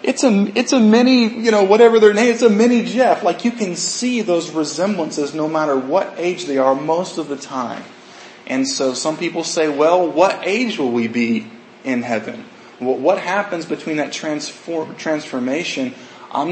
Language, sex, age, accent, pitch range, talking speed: English, male, 20-39, American, 125-160 Hz, 190 wpm